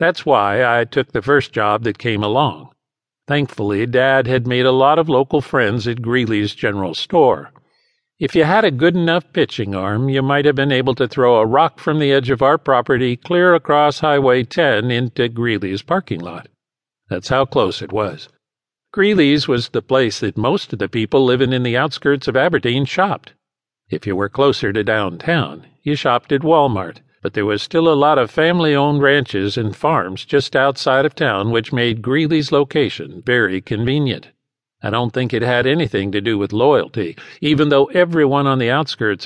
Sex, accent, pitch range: male, American, 115-150 Hz